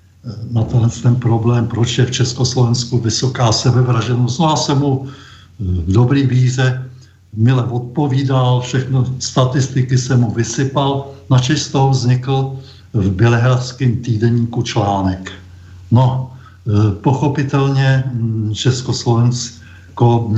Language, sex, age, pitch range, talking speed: Czech, male, 60-79, 110-125 Hz, 105 wpm